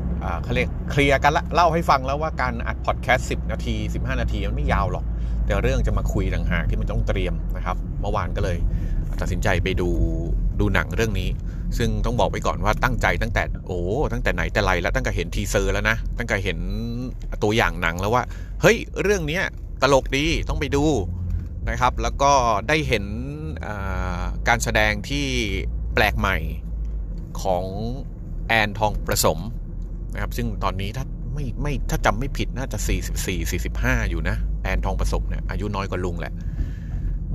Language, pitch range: Thai, 90-115 Hz